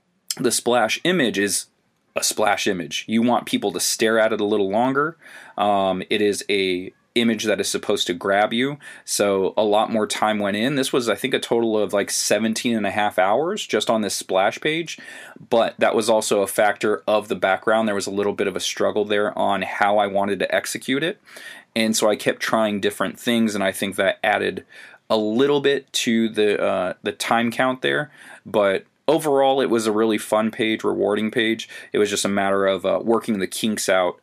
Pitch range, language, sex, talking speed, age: 100-120 Hz, English, male, 210 wpm, 20-39